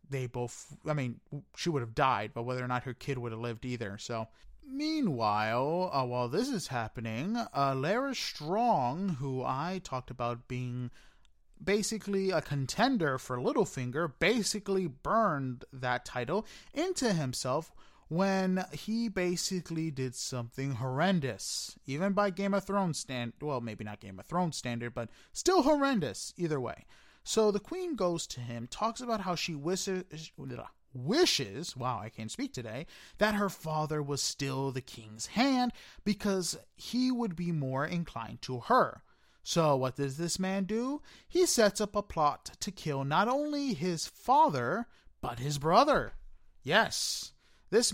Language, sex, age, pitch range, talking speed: English, male, 20-39, 130-210 Hz, 155 wpm